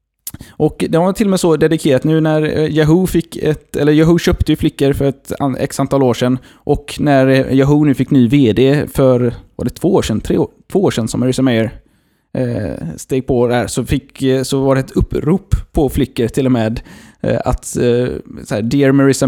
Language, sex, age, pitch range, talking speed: Swedish, male, 20-39, 125-155 Hz, 200 wpm